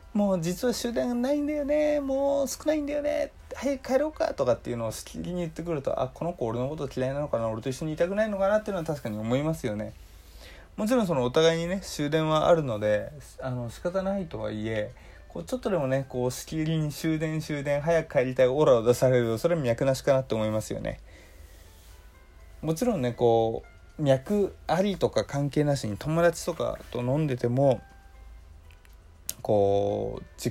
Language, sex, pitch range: Japanese, male, 110-160 Hz